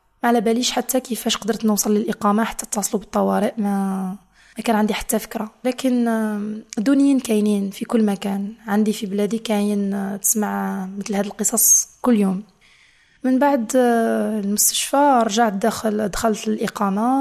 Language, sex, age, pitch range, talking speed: English, female, 20-39, 210-240 Hz, 135 wpm